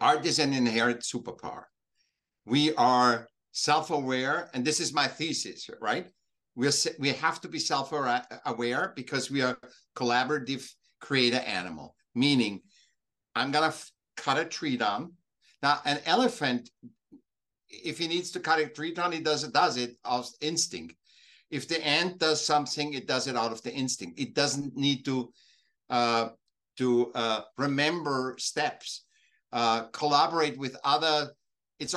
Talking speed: 145 wpm